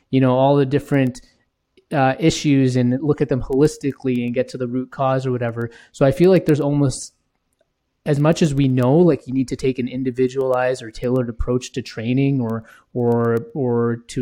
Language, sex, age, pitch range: English, male, 20-39, 125-150 Hz